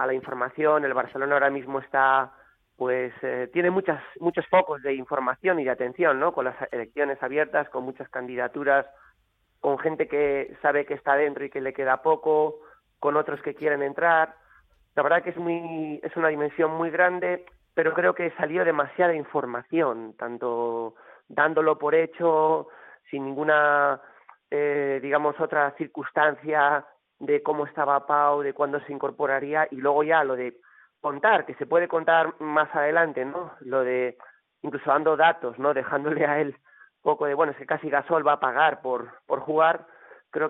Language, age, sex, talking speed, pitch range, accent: Spanish, 30-49, male, 170 wpm, 135-155 Hz, Spanish